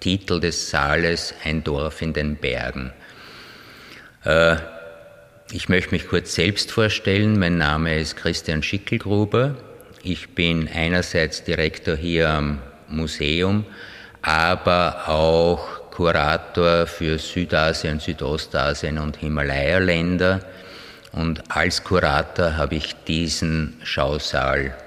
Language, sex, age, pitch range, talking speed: German, male, 50-69, 80-100 Hz, 100 wpm